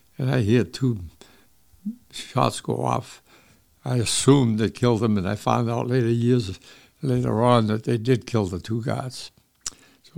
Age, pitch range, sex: 60-79, 110-135 Hz, male